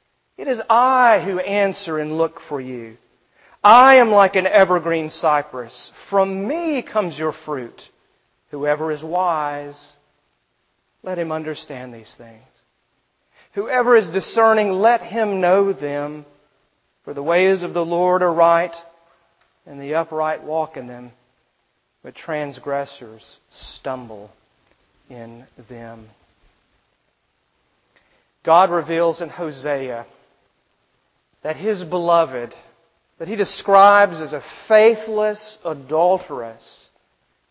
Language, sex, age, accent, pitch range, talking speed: English, male, 40-59, American, 140-185 Hz, 110 wpm